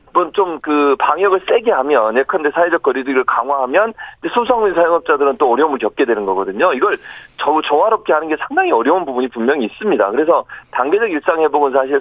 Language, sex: Korean, male